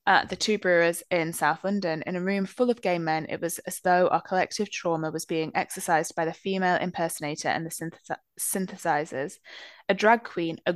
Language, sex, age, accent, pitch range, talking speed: English, female, 20-39, British, 165-195 Hz, 200 wpm